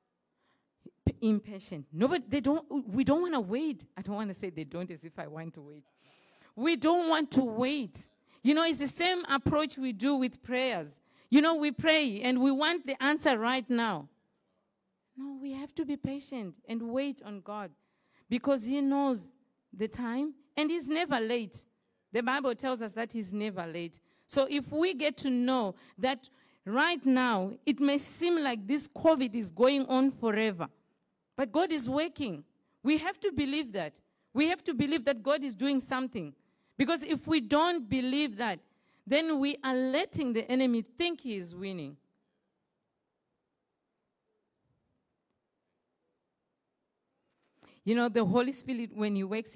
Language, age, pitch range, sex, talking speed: English, 40-59, 210-280 Hz, female, 165 wpm